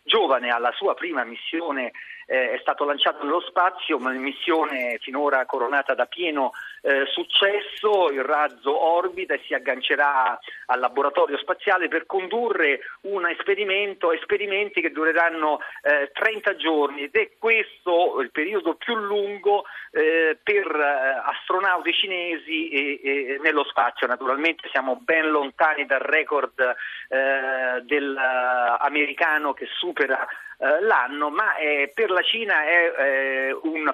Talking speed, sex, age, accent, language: 125 wpm, male, 40-59, native, Italian